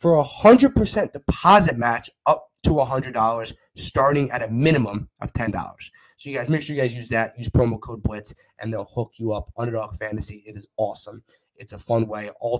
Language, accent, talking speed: English, American, 200 wpm